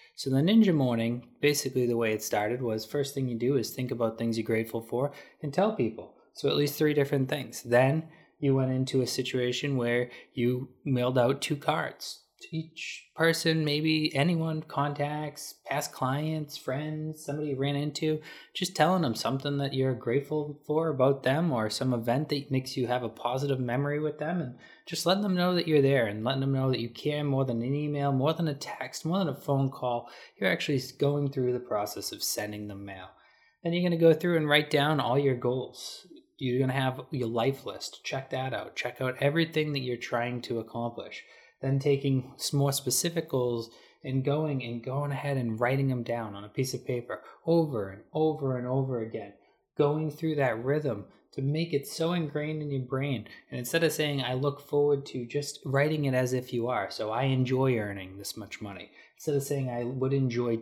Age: 20-39